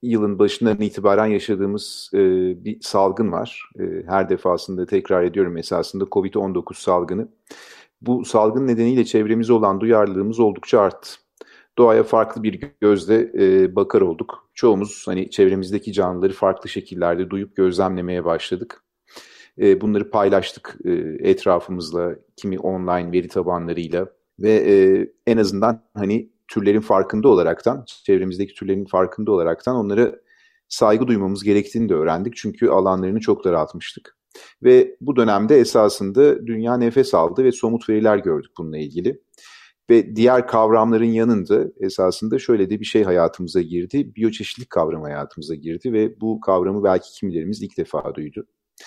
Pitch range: 95-120 Hz